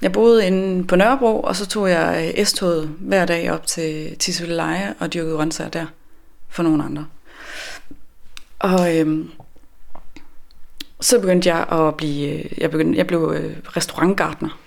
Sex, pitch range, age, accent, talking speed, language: female, 160-195 Hz, 20-39, native, 140 wpm, Danish